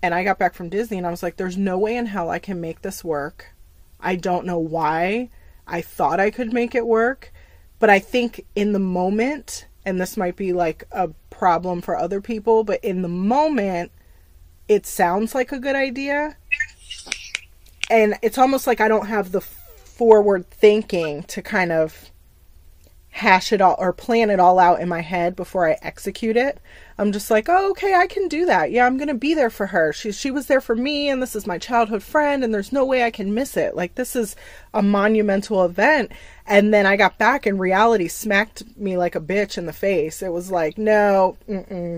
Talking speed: 210 wpm